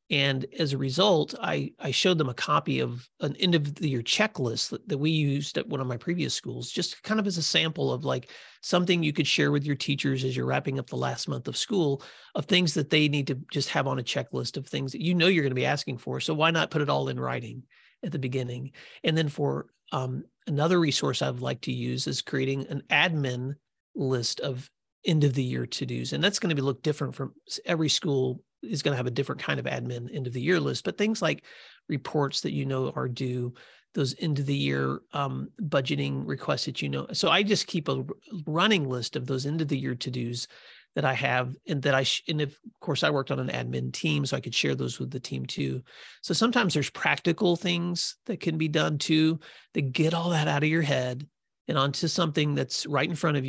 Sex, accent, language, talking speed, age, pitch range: male, American, English, 240 wpm, 40-59, 125-160 Hz